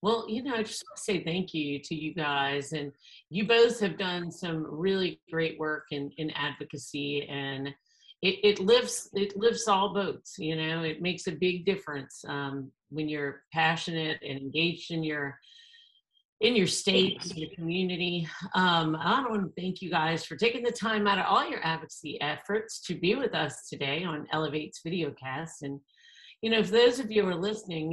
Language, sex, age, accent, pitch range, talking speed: English, female, 50-69, American, 160-205 Hz, 185 wpm